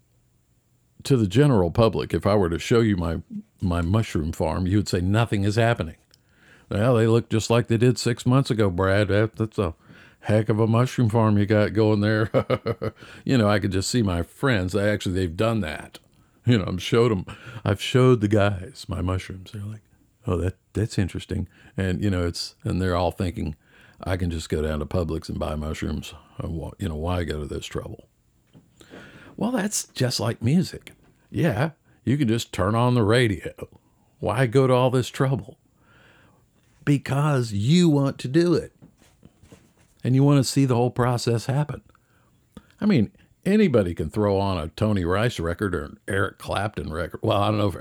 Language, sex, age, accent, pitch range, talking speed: English, male, 50-69, American, 95-120 Hz, 195 wpm